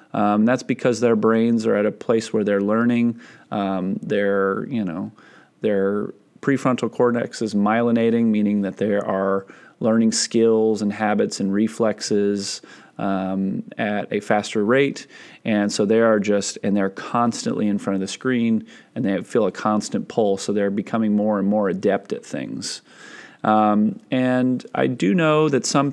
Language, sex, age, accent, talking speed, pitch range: English, male, 30-49, American, 165 wpm, 100-125 Hz